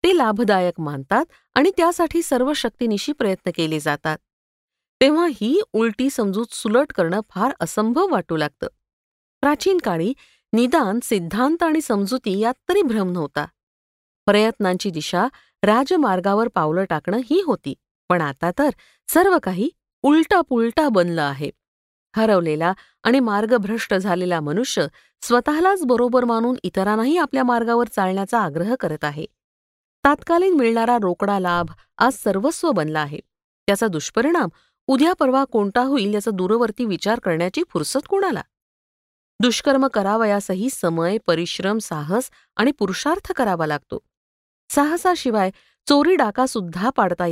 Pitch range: 185-270 Hz